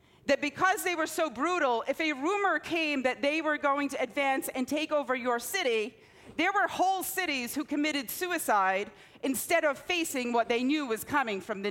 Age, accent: 40-59, American